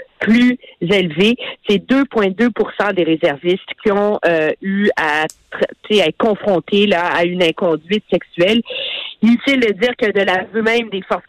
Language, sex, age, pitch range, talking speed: French, female, 50-69, 195-260 Hz, 165 wpm